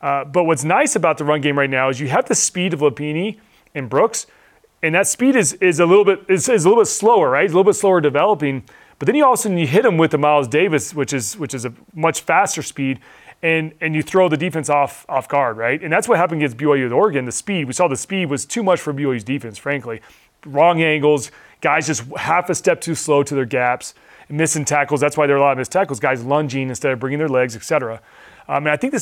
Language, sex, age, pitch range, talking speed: English, male, 30-49, 140-180 Hz, 265 wpm